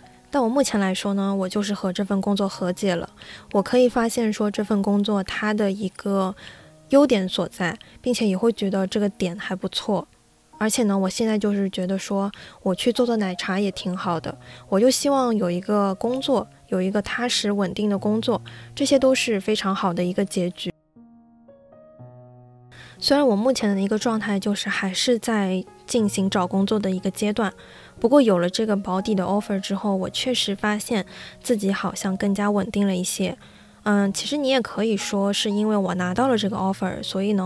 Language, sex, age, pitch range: Chinese, female, 10-29, 190-215 Hz